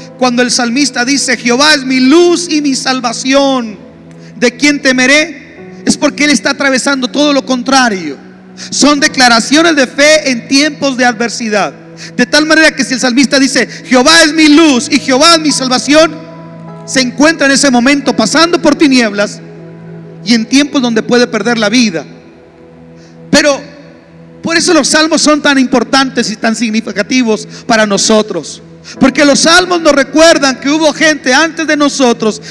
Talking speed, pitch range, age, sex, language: 160 wpm, 235-295 Hz, 40-59, male, Spanish